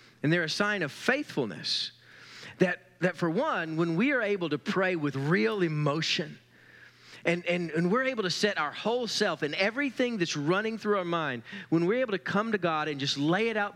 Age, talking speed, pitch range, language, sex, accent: 40-59, 210 wpm, 145-205 Hz, English, male, American